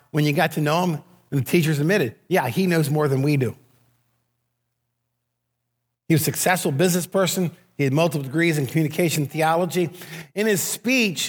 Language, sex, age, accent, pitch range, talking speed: English, male, 50-69, American, 120-165 Hz, 175 wpm